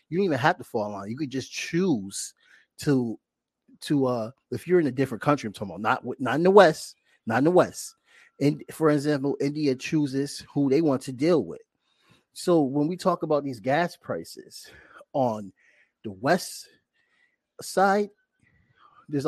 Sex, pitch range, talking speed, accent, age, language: male, 115-150 Hz, 175 wpm, American, 30-49, English